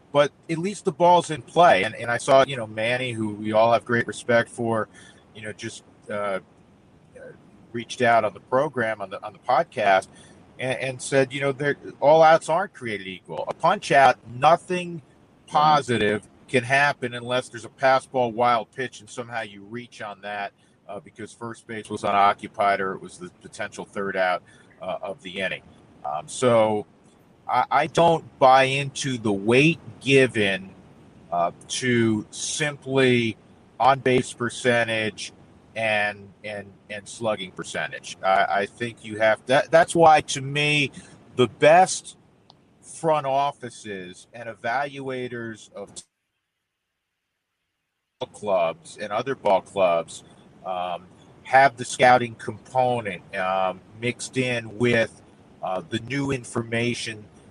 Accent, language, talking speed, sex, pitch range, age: American, English, 145 wpm, male, 105-135 Hz, 50-69